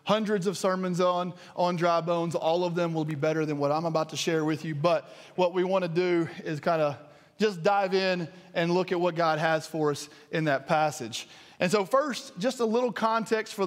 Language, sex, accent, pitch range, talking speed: English, male, American, 160-190 Hz, 235 wpm